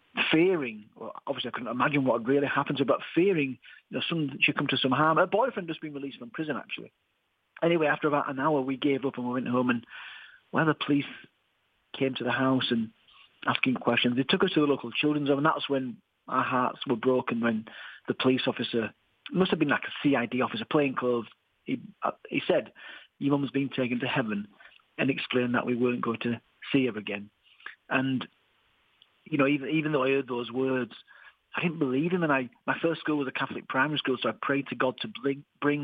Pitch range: 125-145 Hz